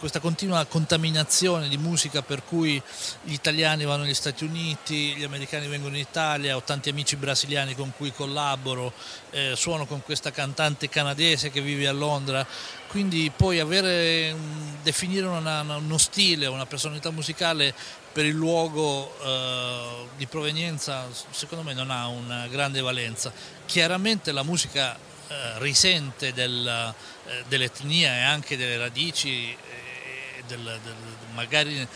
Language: Italian